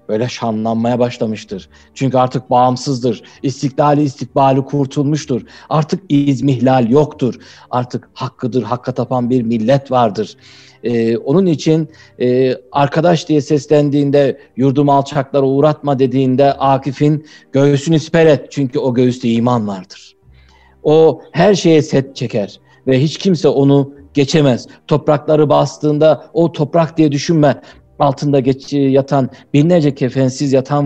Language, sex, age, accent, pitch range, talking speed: Turkish, male, 60-79, native, 125-150 Hz, 120 wpm